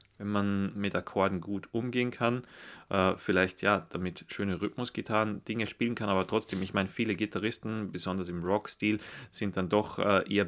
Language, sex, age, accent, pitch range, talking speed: German, male, 30-49, German, 95-110 Hz, 160 wpm